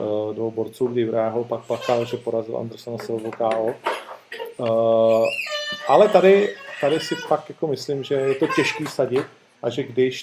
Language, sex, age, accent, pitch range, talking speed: Czech, male, 40-59, native, 110-130 Hz, 155 wpm